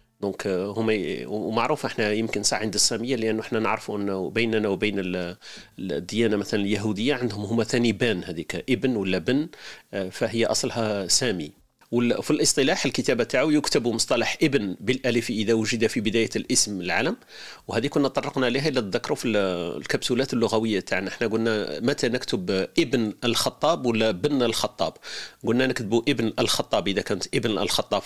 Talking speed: 145 wpm